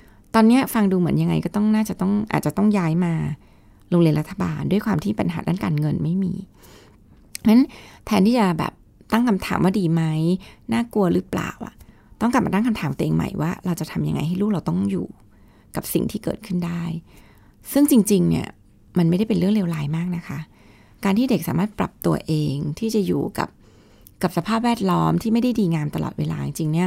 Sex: female